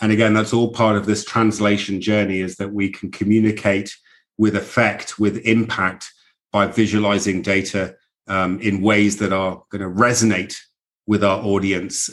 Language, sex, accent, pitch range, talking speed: English, male, British, 100-115 Hz, 160 wpm